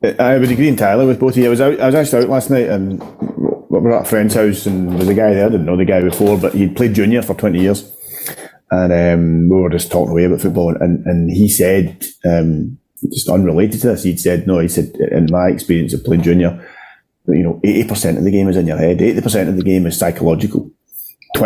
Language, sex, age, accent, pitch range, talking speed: English, male, 30-49, British, 85-105 Hz, 250 wpm